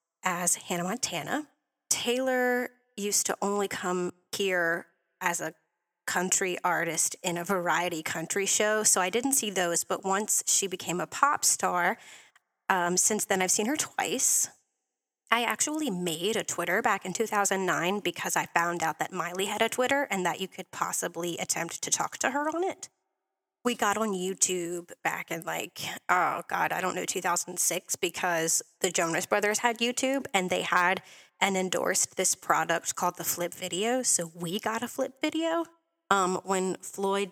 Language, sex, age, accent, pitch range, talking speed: English, female, 30-49, American, 175-215 Hz, 170 wpm